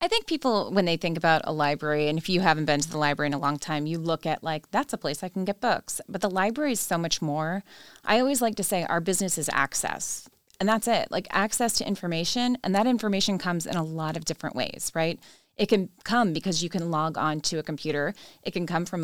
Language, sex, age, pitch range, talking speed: English, female, 20-39, 160-190 Hz, 255 wpm